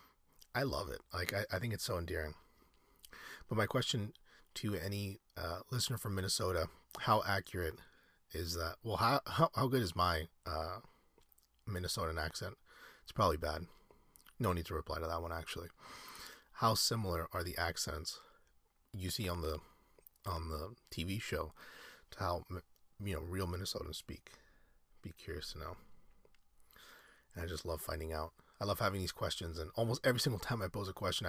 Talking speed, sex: 170 wpm, male